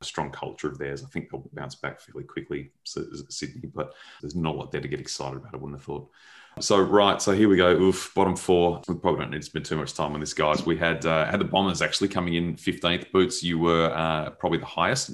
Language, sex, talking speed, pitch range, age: English, male, 260 wpm, 75-85 Hz, 30-49